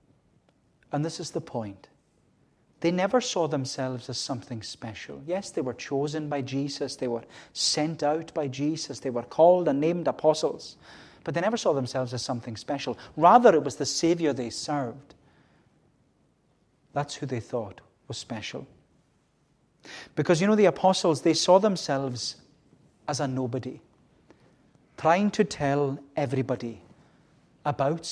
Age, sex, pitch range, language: 40-59, male, 125-155 Hz, English